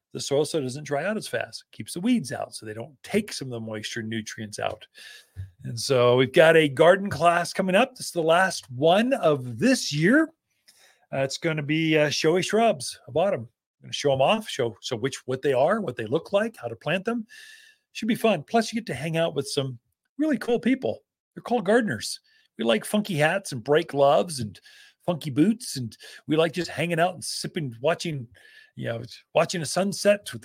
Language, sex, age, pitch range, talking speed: English, male, 40-59, 130-200 Hz, 220 wpm